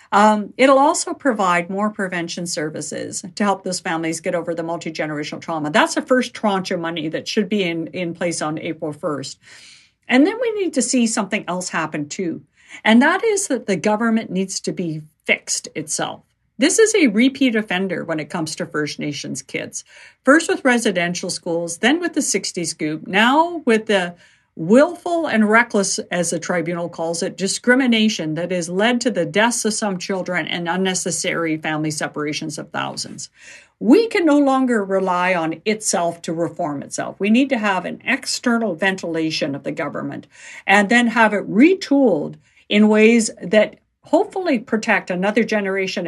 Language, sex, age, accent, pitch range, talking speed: English, female, 50-69, American, 170-235 Hz, 170 wpm